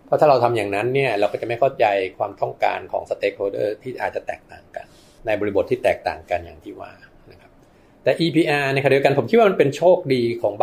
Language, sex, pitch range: Thai, male, 115-145 Hz